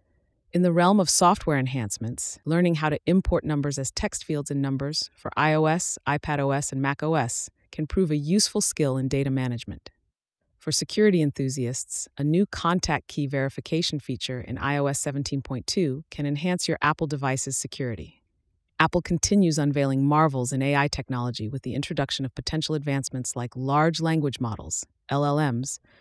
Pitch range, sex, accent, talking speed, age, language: 130-160 Hz, female, American, 150 wpm, 30-49, English